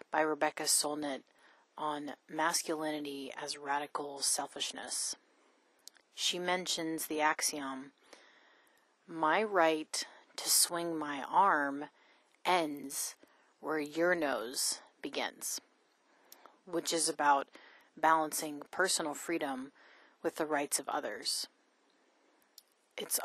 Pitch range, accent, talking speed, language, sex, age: 150-180 Hz, American, 90 wpm, English, female, 30-49